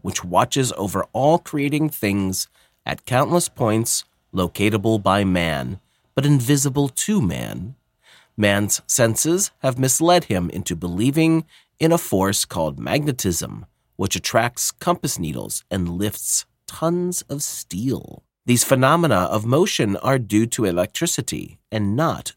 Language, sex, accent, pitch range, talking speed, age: English, male, American, 95-145 Hz, 125 wpm, 40-59